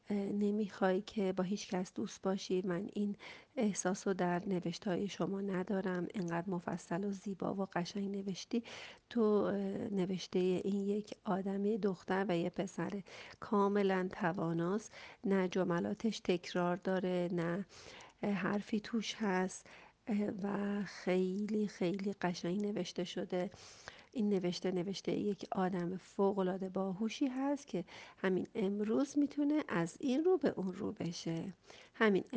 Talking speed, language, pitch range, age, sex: 125 wpm, Persian, 180-215 Hz, 40-59, female